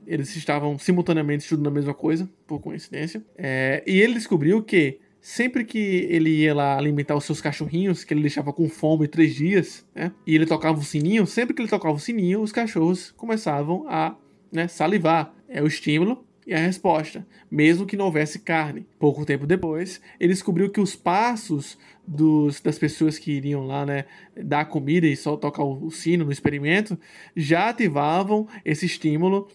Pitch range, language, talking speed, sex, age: 150-195 Hz, Portuguese, 175 wpm, male, 20-39